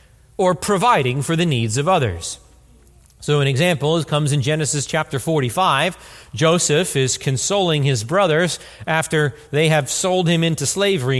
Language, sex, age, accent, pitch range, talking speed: English, male, 40-59, American, 145-205 Hz, 145 wpm